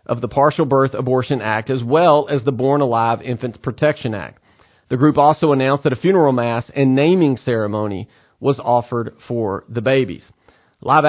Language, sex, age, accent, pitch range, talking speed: English, male, 40-59, American, 120-145 Hz, 175 wpm